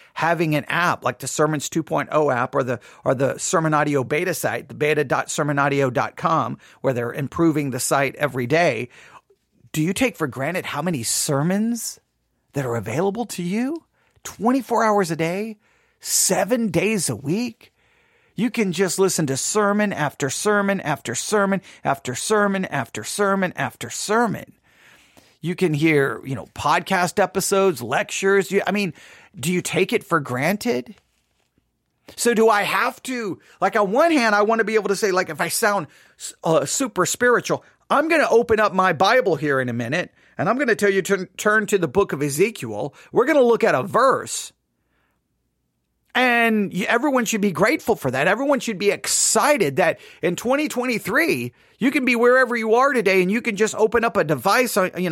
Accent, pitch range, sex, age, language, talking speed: American, 150-225 Hz, male, 40-59, English, 180 wpm